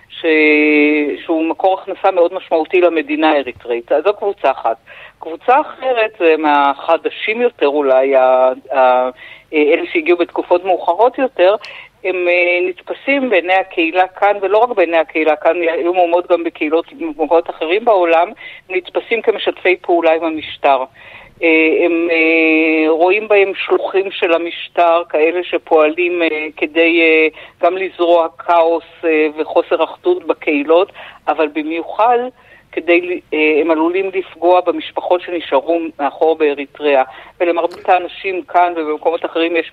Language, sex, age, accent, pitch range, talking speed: Hebrew, female, 50-69, native, 155-180 Hz, 115 wpm